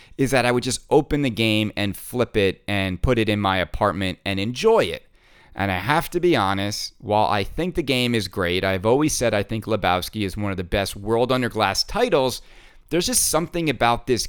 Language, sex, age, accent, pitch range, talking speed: English, male, 30-49, American, 100-135 Hz, 225 wpm